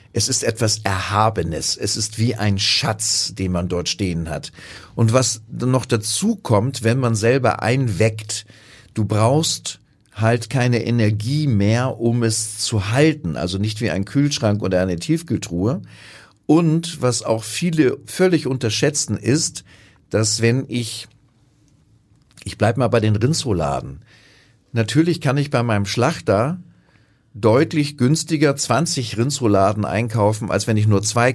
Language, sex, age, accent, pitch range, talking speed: German, male, 40-59, German, 100-130 Hz, 140 wpm